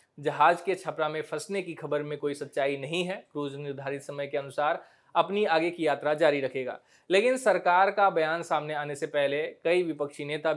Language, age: Hindi, 20-39